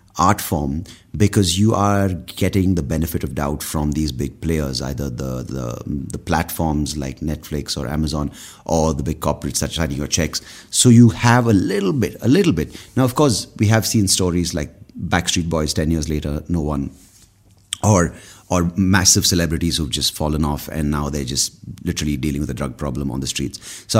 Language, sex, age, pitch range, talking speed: English, male, 30-49, 75-95 Hz, 195 wpm